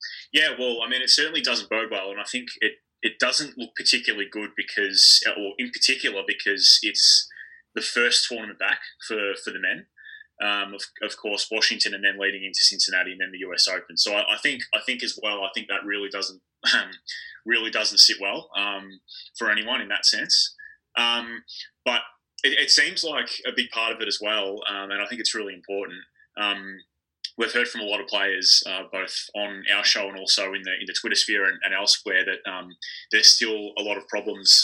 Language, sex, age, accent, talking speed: English, male, 20-39, Australian, 210 wpm